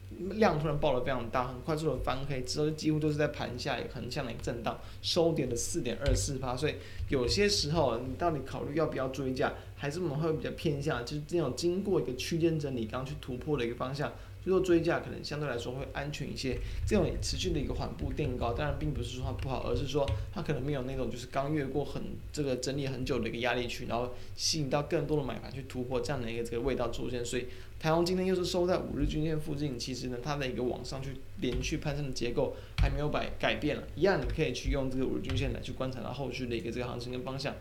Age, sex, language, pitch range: 20-39, male, Chinese, 120-155 Hz